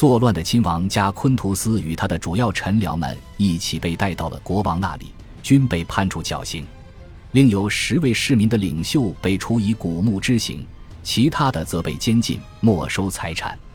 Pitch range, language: 85-115 Hz, Chinese